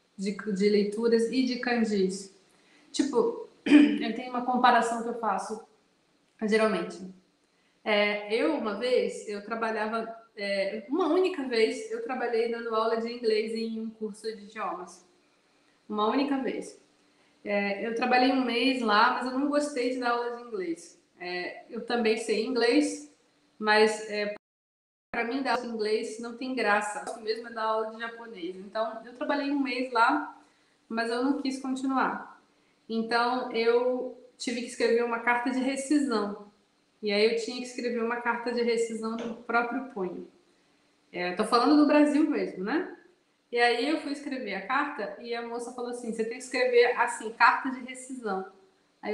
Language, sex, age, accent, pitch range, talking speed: Portuguese, female, 20-39, Brazilian, 220-255 Hz, 170 wpm